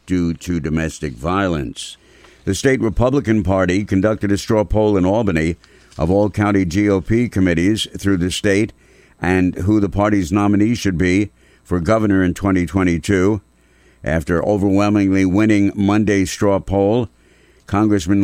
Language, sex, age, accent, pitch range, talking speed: English, male, 60-79, American, 90-105 Hz, 130 wpm